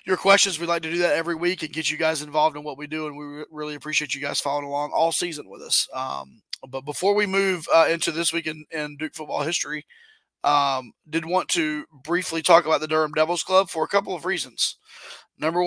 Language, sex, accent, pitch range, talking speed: English, male, American, 155-180 Hz, 235 wpm